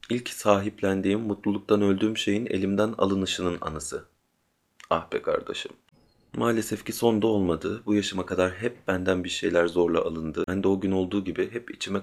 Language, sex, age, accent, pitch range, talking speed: Turkish, male, 30-49, native, 90-110 Hz, 165 wpm